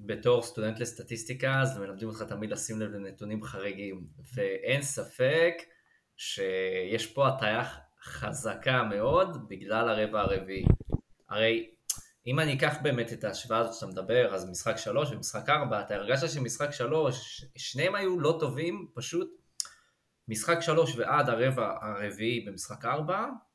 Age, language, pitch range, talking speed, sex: 20-39, Hebrew, 110-145 Hz, 135 wpm, male